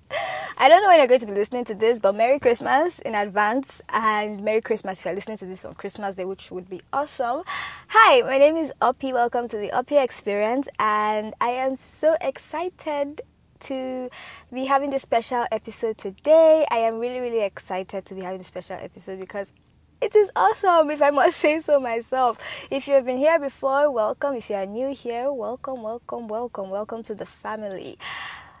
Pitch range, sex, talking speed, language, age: 200-265 Hz, female, 195 wpm, English, 10-29